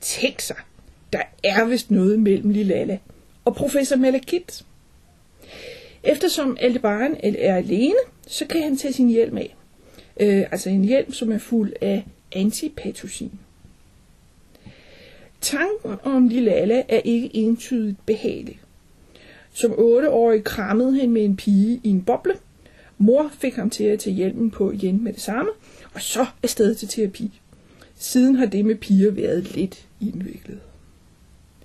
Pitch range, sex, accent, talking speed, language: 205-260 Hz, female, native, 140 wpm, Danish